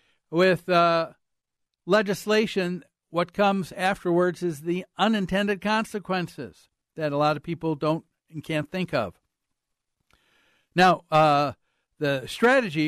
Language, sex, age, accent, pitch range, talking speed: English, male, 60-79, American, 150-190 Hz, 110 wpm